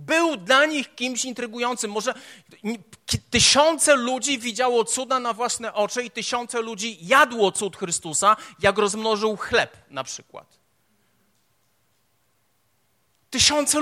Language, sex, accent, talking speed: Polish, male, native, 110 wpm